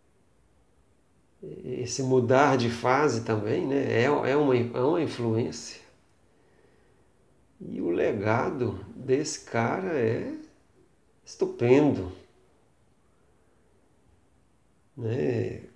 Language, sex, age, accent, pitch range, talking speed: Portuguese, male, 50-69, Brazilian, 115-135 Hz, 75 wpm